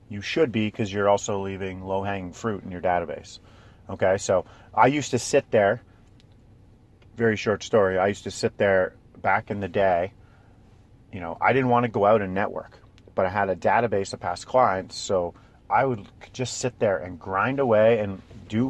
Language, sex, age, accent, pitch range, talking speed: English, male, 40-59, American, 95-115 Hz, 195 wpm